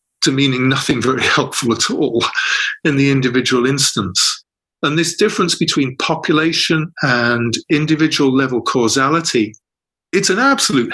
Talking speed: 125 wpm